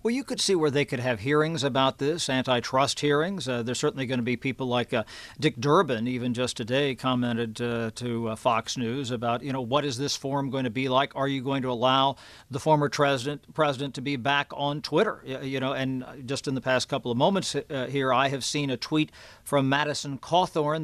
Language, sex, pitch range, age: English, male, 130-155 Hz, 50-69